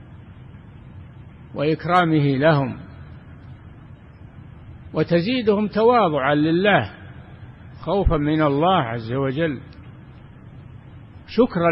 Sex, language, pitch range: male, Arabic, 120-170 Hz